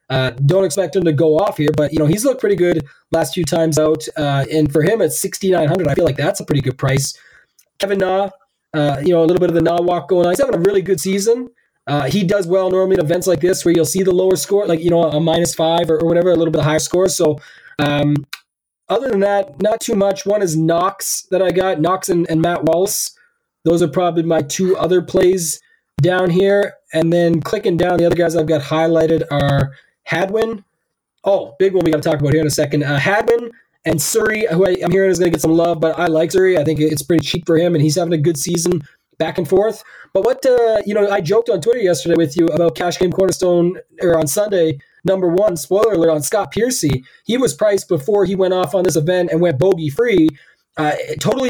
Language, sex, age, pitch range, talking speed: English, male, 20-39, 160-190 Hz, 240 wpm